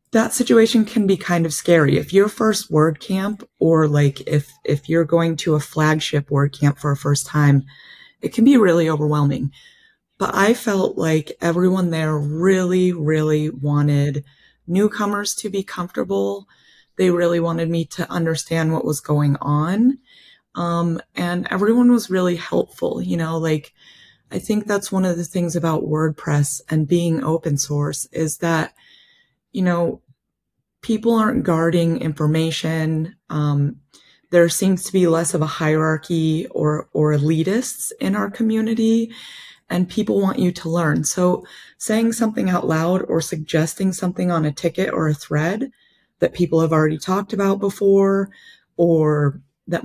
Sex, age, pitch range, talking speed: female, 30-49, 155-195 Hz, 155 wpm